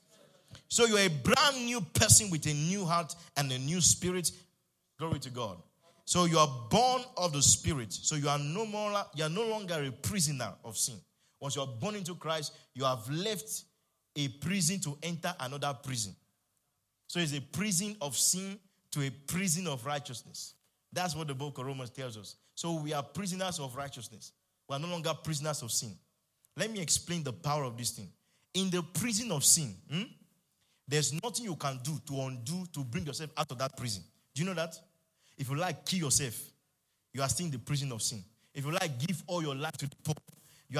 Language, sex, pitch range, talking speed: English, male, 135-175 Hz, 205 wpm